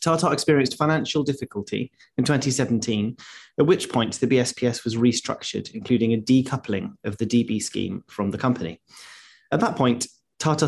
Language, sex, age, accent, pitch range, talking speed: English, male, 30-49, British, 115-140 Hz, 150 wpm